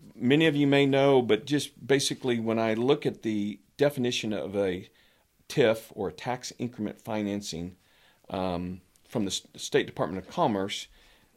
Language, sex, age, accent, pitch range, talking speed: English, male, 50-69, American, 95-120 Hz, 155 wpm